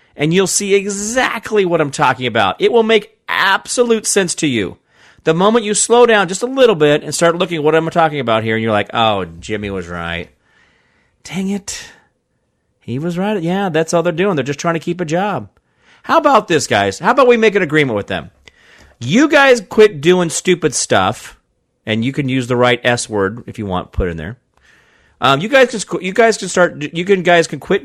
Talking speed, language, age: 220 wpm, English, 40-59